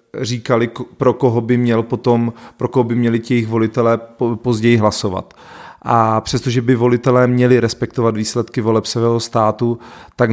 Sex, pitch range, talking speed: male, 110-125 Hz, 140 wpm